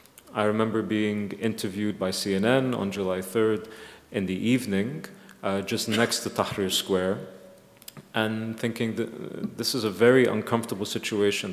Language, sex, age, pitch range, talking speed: English, male, 30-49, 100-125 Hz, 140 wpm